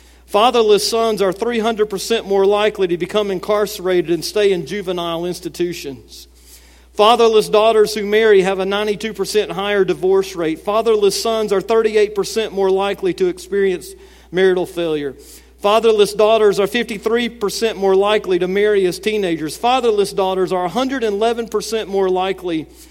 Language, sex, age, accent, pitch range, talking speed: English, male, 40-59, American, 165-210 Hz, 130 wpm